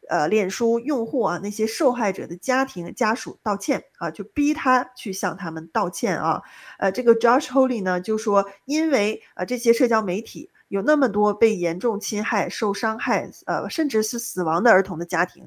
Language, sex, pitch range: Chinese, female, 195-265 Hz